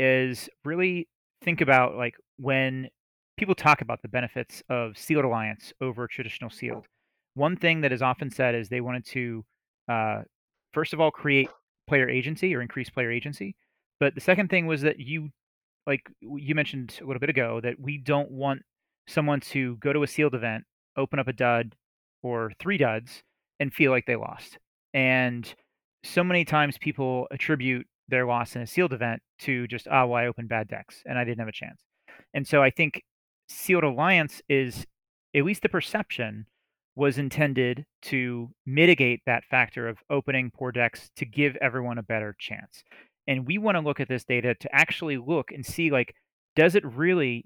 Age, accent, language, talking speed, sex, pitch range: 30-49, American, English, 180 wpm, male, 120-150 Hz